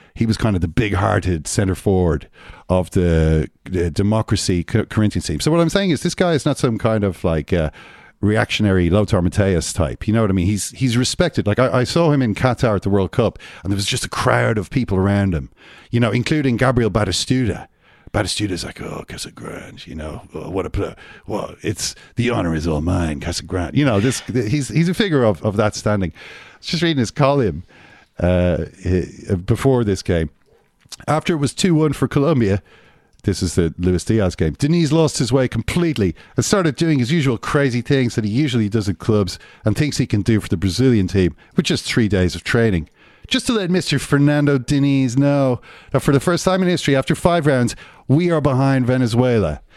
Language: English